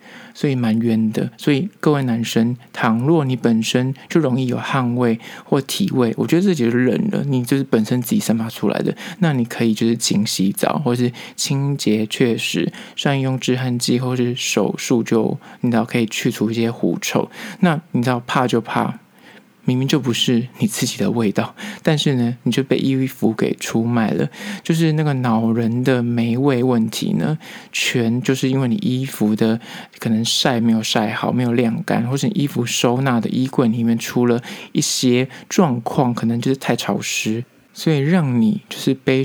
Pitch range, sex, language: 115-140 Hz, male, Chinese